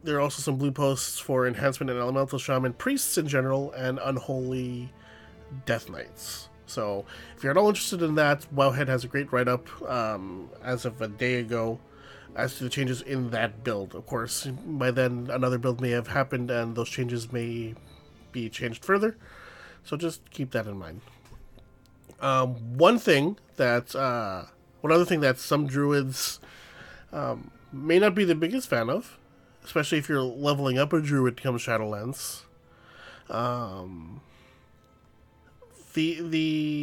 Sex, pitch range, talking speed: male, 125-155 Hz, 150 wpm